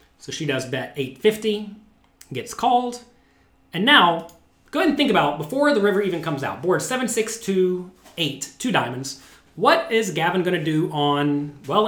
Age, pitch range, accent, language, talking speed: 30-49, 145-210 Hz, American, English, 155 wpm